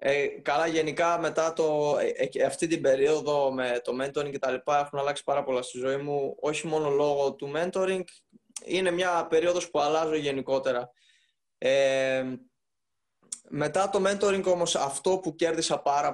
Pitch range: 140-170 Hz